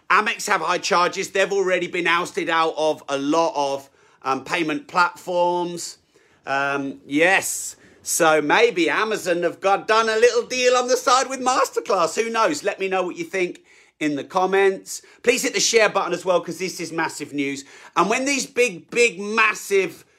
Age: 40-59